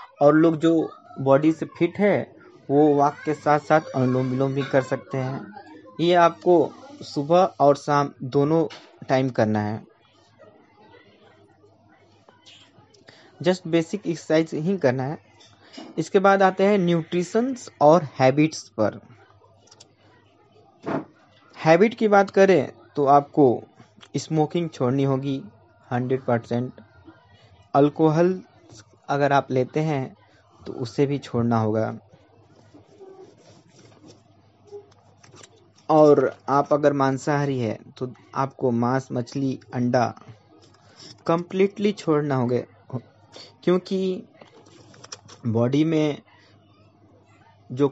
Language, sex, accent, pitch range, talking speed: Hindi, male, native, 110-155 Hz, 100 wpm